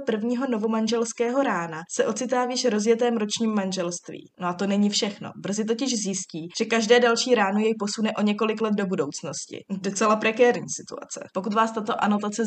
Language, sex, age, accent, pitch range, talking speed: Czech, female, 20-39, native, 185-225 Hz, 170 wpm